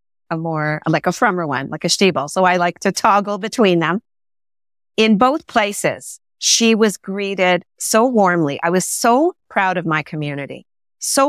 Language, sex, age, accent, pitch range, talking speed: English, female, 40-59, American, 165-225 Hz, 170 wpm